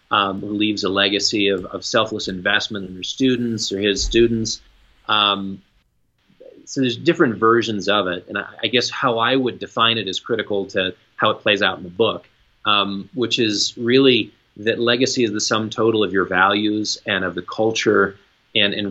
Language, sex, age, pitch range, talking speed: English, male, 30-49, 100-120 Hz, 185 wpm